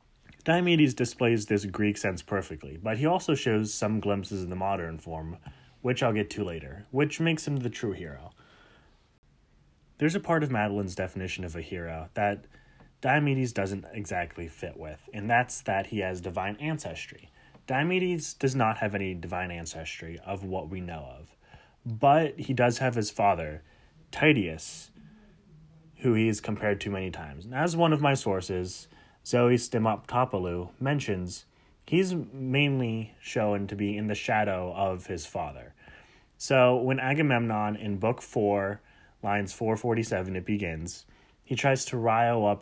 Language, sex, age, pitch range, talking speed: English, male, 30-49, 95-130 Hz, 155 wpm